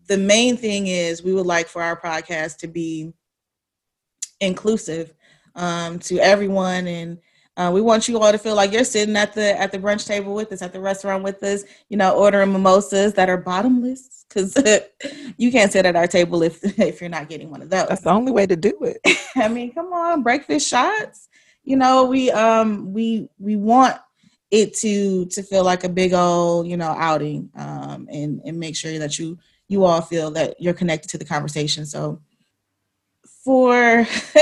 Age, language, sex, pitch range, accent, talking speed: 20-39, English, female, 170-215 Hz, American, 195 wpm